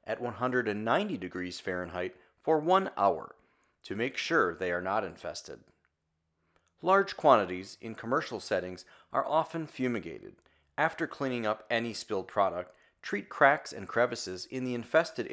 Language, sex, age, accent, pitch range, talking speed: English, male, 40-59, American, 85-130 Hz, 135 wpm